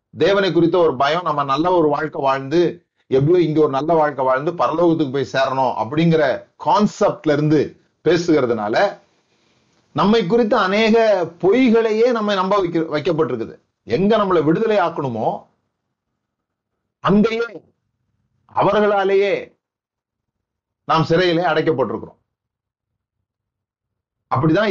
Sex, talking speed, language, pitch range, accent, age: male, 95 wpm, Tamil, 140-185 Hz, native, 40-59